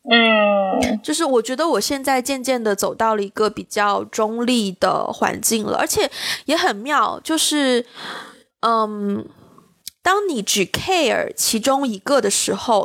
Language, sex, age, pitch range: Chinese, female, 20-39, 210-265 Hz